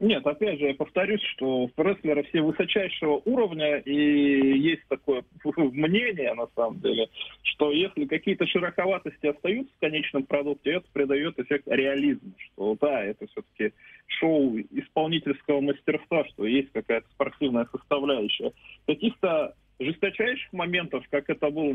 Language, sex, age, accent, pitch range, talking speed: Russian, male, 20-39, native, 135-185 Hz, 130 wpm